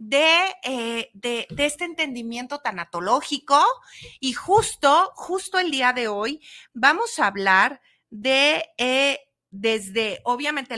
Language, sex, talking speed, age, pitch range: Spanish, female, 115 wpm, 40-59, 225-300 Hz